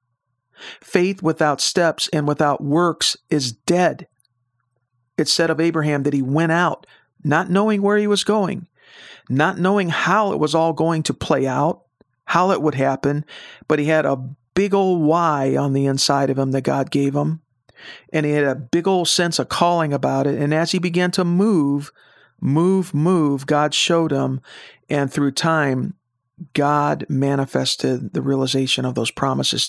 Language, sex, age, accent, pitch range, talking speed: English, male, 50-69, American, 135-165 Hz, 170 wpm